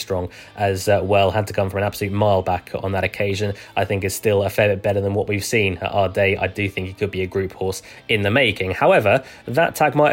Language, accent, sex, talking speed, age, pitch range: English, British, male, 275 wpm, 20-39, 100-115 Hz